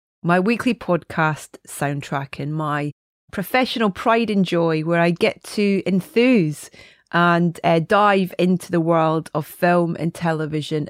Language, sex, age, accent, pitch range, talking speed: English, female, 30-49, British, 165-195 Hz, 140 wpm